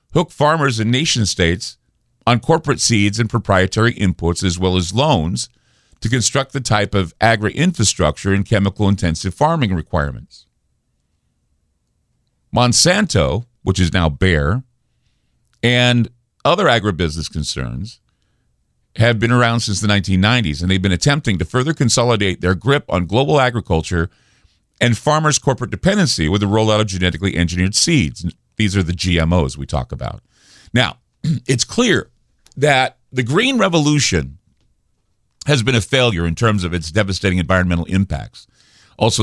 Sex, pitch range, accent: male, 90-125 Hz, American